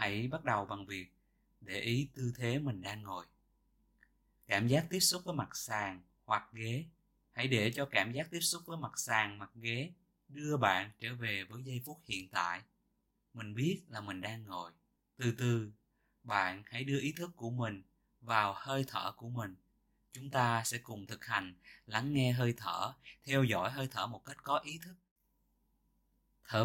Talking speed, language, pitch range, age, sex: 185 wpm, Vietnamese, 105-145 Hz, 20-39, male